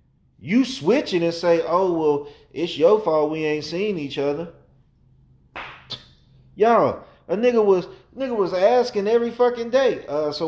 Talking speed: 150 wpm